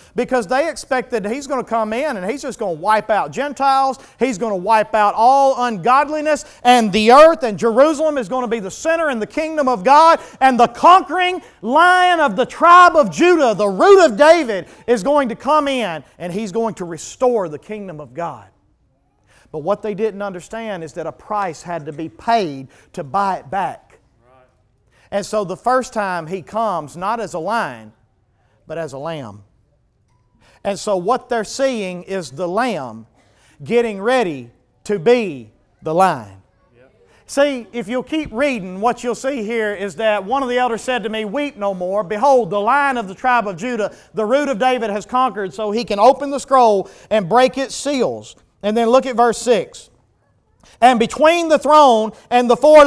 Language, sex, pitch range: English, male, 185-265 Hz